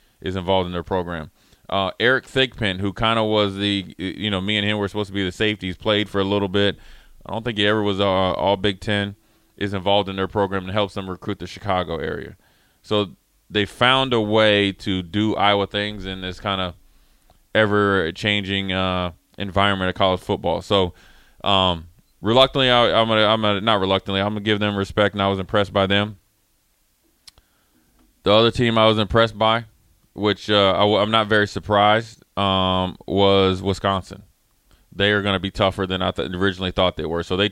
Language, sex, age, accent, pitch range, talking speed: English, male, 20-39, American, 95-105 Hz, 195 wpm